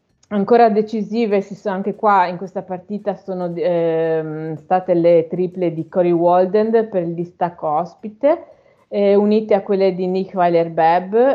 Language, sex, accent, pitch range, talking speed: Italian, female, native, 175-210 Hz, 150 wpm